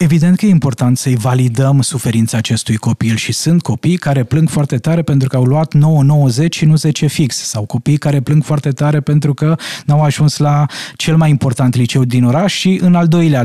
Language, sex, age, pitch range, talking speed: Romanian, male, 20-39, 130-155 Hz, 205 wpm